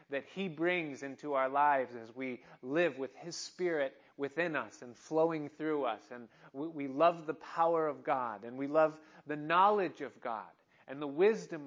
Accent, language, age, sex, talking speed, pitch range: American, English, 30-49, male, 185 wpm, 140-175 Hz